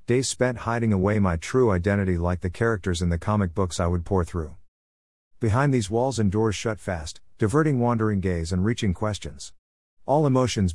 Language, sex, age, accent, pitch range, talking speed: English, male, 50-69, American, 85-110 Hz, 185 wpm